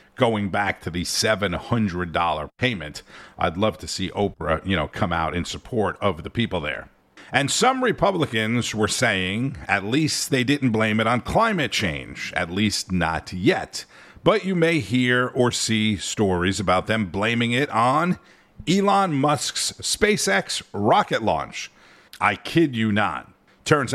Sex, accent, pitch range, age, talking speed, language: male, American, 90-125 Hz, 50-69, 155 wpm, English